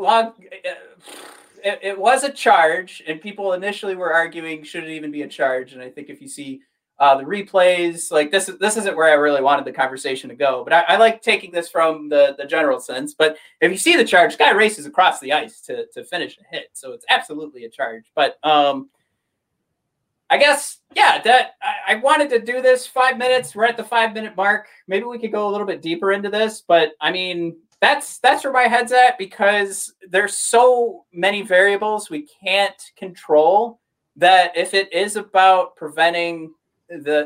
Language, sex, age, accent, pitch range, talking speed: English, male, 30-49, American, 165-245 Hz, 200 wpm